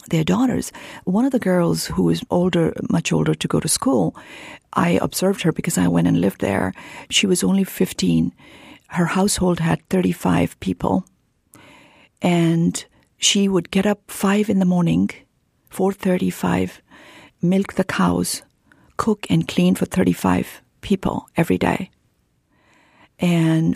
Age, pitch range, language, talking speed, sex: 50-69, 160-190 Hz, English, 140 wpm, female